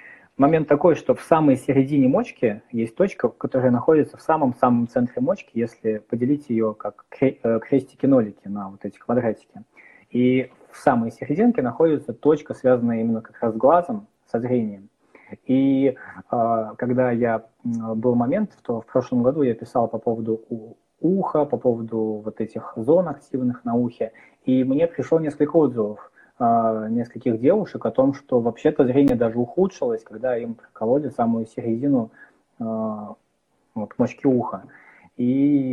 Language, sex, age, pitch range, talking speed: Russian, male, 20-39, 115-145 Hz, 140 wpm